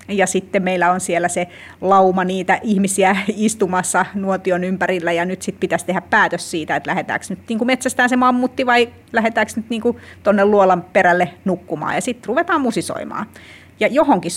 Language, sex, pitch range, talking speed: Finnish, female, 175-215 Hz, 155 wpm